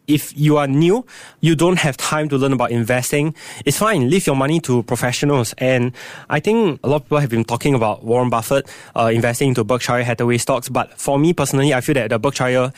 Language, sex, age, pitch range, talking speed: English, male, 20-39, 120-145 Hz, 220 wpm